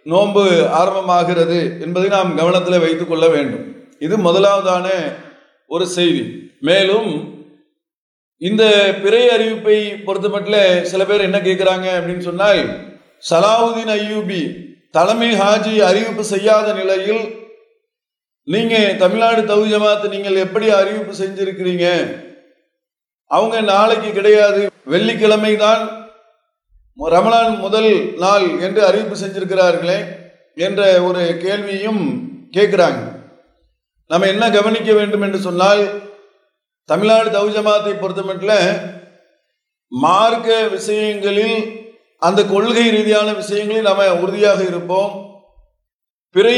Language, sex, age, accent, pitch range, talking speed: English, male, 40-59, Indian, 190-220 Hz, 80 wpm